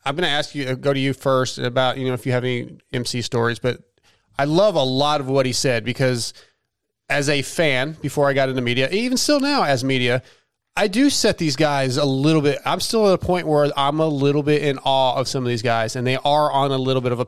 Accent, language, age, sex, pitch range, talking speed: American, English, 30-49, male, 125-150 Hz, 260 wpm